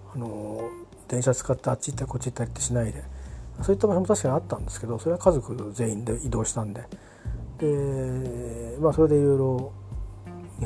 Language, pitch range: Japanese, 105-150 Hz